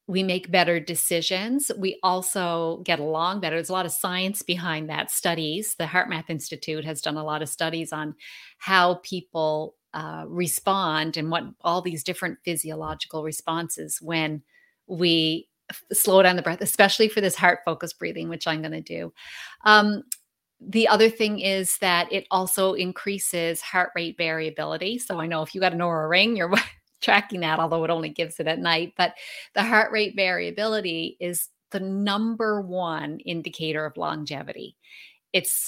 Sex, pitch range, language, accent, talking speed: female, 165-195 Hz, English, American, 165 wpm